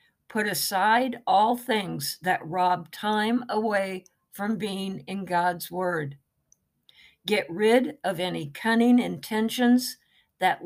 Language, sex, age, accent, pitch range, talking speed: English, female, 60-79, American, 180-235 Hz, 115 wpm